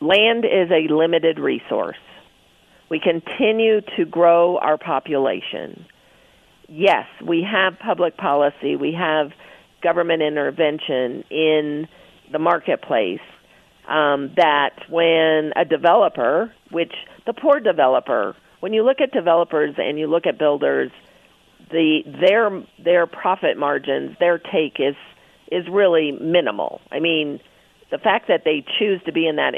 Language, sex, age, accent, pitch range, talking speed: English, female, 50-69, American, 150-185 Hz, 130 wpm